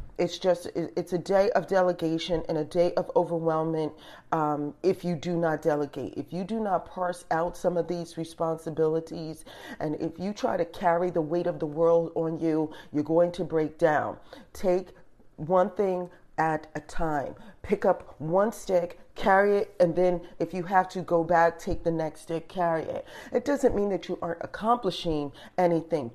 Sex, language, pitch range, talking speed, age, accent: female, English, 165-215 Hz, 185 wpm, 40-59, American